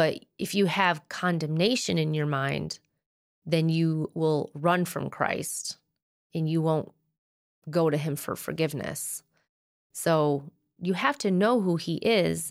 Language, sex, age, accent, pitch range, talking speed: English, female, 30-49, American, 160-200 Hz, 145 wpm